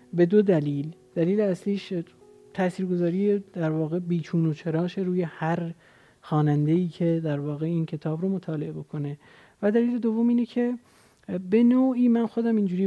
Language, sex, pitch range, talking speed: Persian, male, 155-210 Hz, 150 wpm